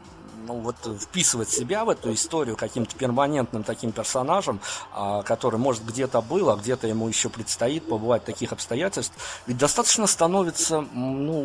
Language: Russian